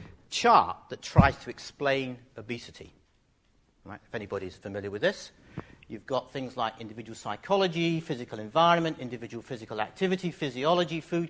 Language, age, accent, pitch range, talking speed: English, 50-69, British, 125-165 Hz, 125 wpm